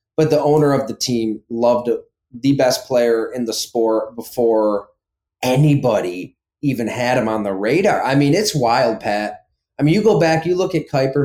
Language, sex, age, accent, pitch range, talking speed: English, male, 20-39, American, 115-150 Hz, 185 wpm